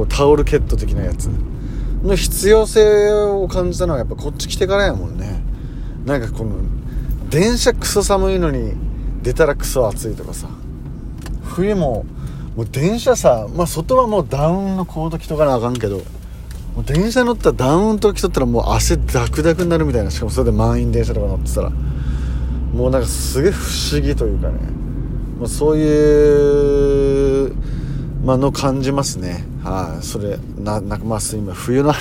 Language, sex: Japanese, male